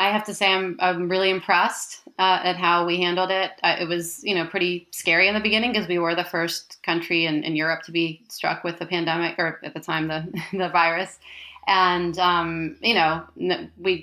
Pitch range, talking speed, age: 165-185 Hz, 220 wpm, 30-49